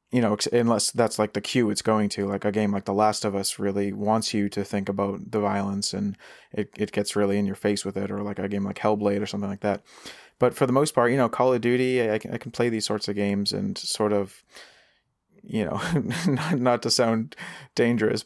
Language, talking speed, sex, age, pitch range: English, 245 wpm, male, 30-49, 105-125 Hz